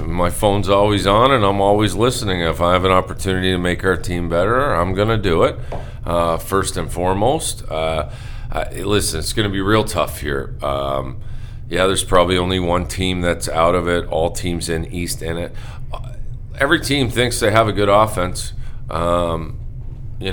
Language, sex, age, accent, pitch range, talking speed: English, male, 40-59, American, 90-115 Hz, 185 wpm